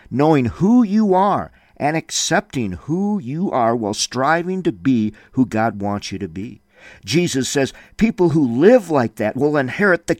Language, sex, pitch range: English, male, 125-205 Hz